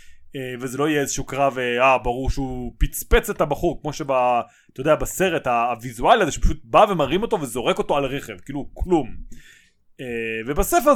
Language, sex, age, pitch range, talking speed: Hebrew, male, 20-39, 130-195 Hz, 165 wpm